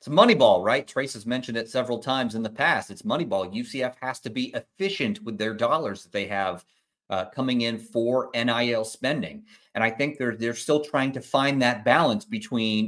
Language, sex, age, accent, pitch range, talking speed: English, male, 30-49, American, 115-140 Hz, 200 wpm